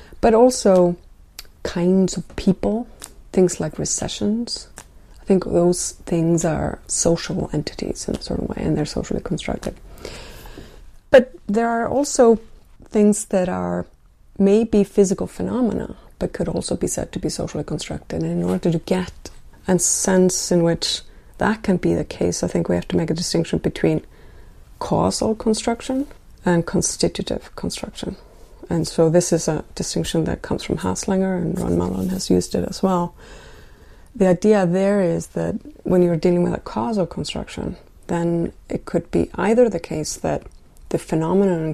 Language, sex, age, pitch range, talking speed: English, female, 30-49, 165-205 Hz, 160 wpm